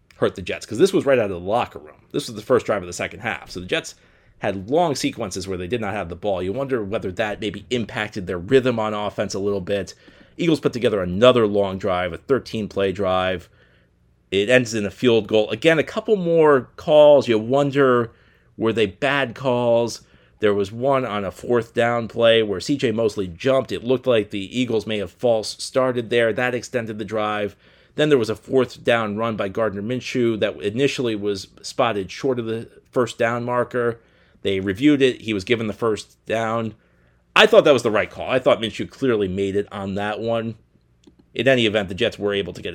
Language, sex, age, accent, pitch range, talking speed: English, male, 40-59, American, 100-120 Hz, 215 wpm